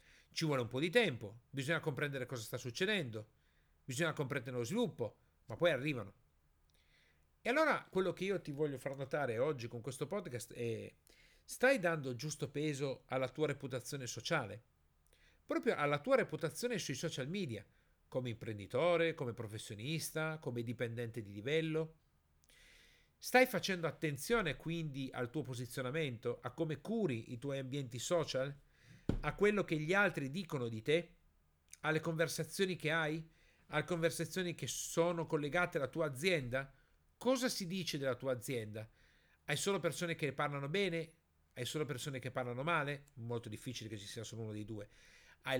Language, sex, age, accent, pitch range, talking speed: Italian, male, 50-69, native, 120-165 Hz, 155 wpm